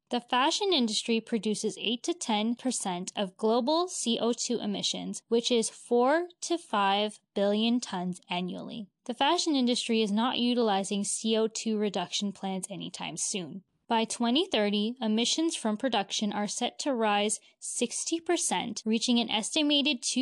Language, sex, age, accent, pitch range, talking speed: English, female, 10-29, American, 205-260 Hz, 130 wpm